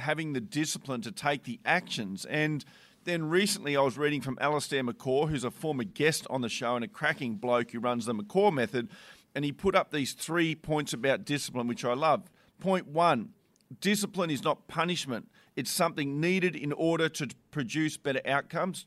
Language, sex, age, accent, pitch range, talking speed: English, male, 40-59, Australian, 130-175 Hz, 190 wpm